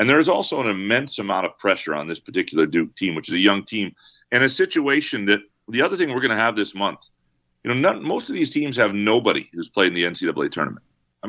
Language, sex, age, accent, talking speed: English, male, 40-59, American, 255 wpm